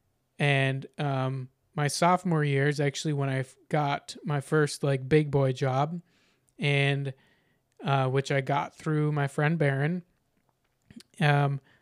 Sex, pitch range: male, 135-155 Hz